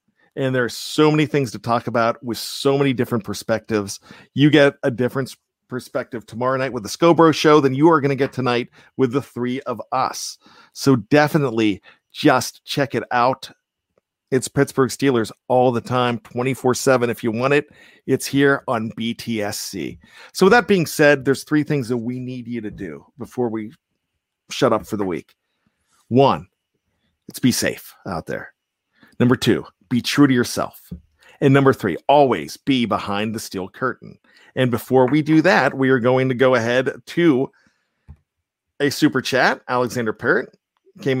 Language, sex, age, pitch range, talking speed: English, male, 40-59, 110-140 Hz, 170 wpm